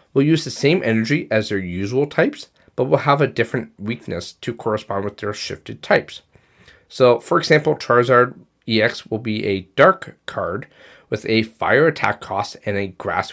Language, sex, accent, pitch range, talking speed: English, male, American, 105-130 Hz, 175 wpm